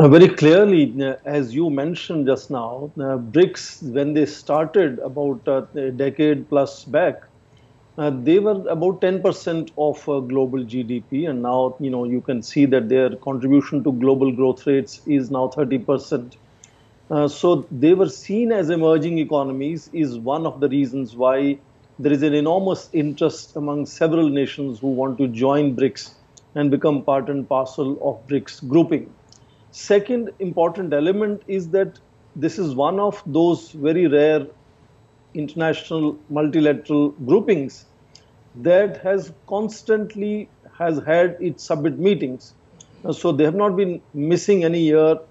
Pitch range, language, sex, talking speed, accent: 135-165 Hz, English, male, 145 wpm, Indian